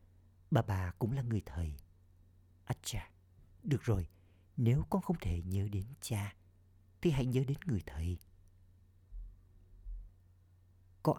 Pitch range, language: 90-110 Hz, Vietnamese